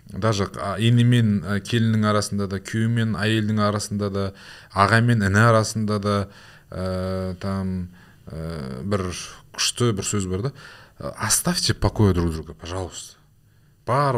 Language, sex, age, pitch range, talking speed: Russian, male, 20-39, 100-130 Hz, 100 wpm